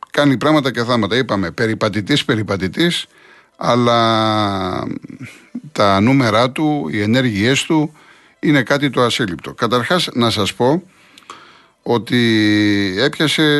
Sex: male